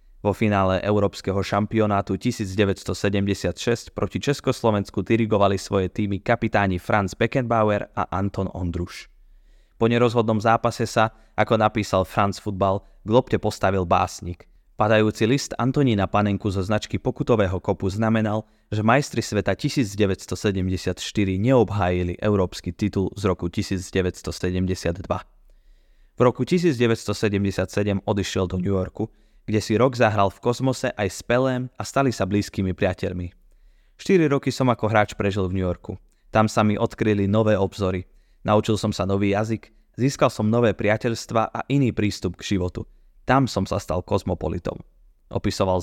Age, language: 20-39, Slovak